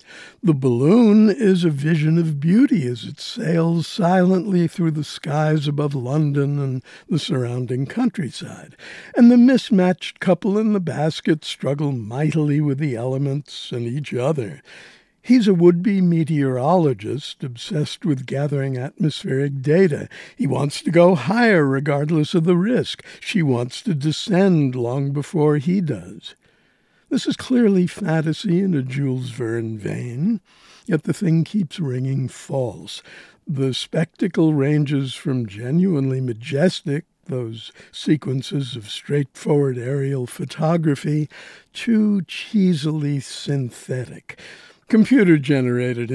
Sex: male